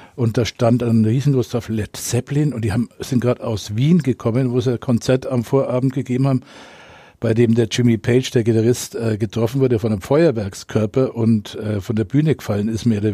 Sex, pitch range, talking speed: male, 115-135 Hz, 200 wpm